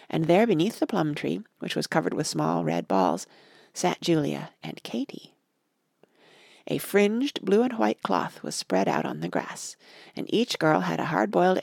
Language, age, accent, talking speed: English, 40-59, American, 165 wpm